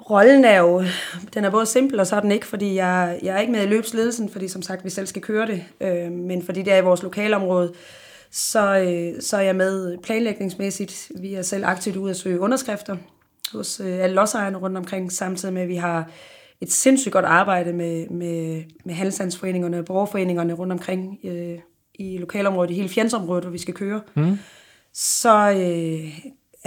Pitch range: 180-205 Hz